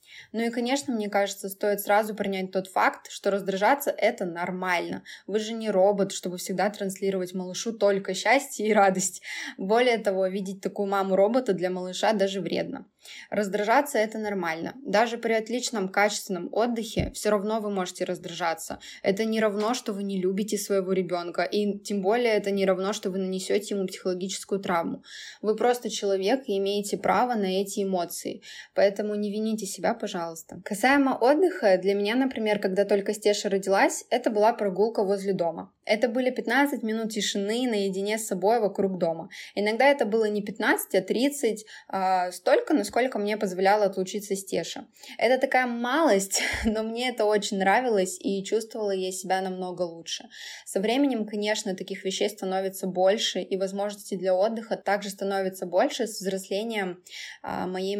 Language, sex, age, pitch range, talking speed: Russian, female, 20-39, 190-220 Hz, 160 wpm